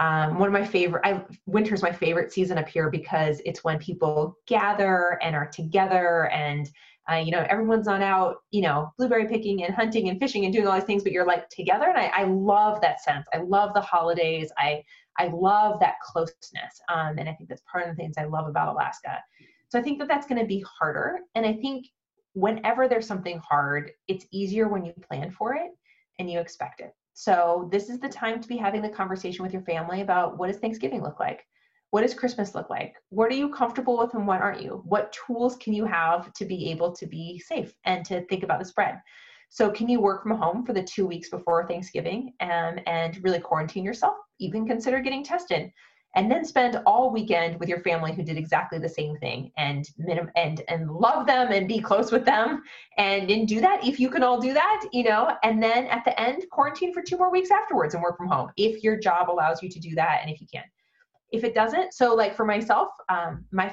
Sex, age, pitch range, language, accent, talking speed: female, 20-39, 170-230 Hz, English, American, 230 wpm